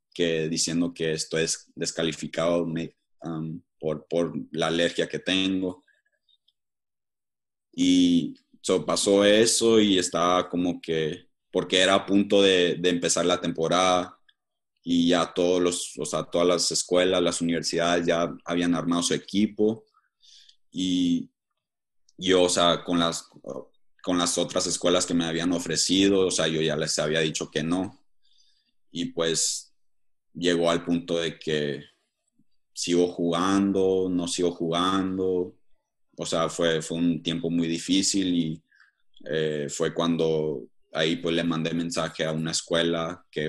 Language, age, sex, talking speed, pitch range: Spanish, 30-49, male, 140 wpm, 80-90 Hz